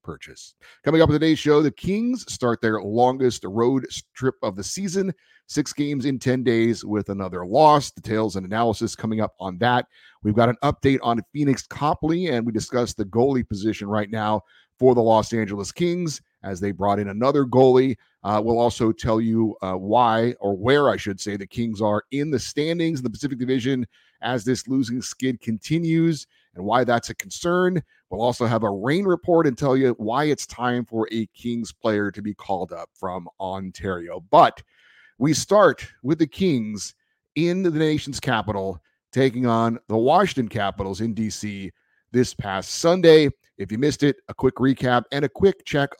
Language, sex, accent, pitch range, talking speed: English, male, American, 105-140 Hz, 185 wpm